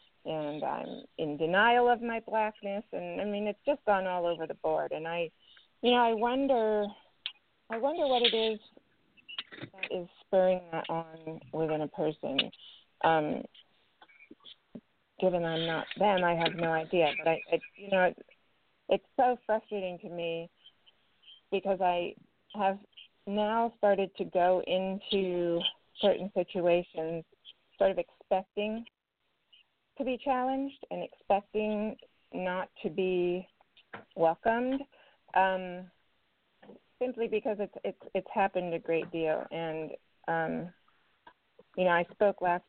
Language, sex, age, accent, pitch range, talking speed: English, female, 40-59, American, 165-210 Hz, 135 wpm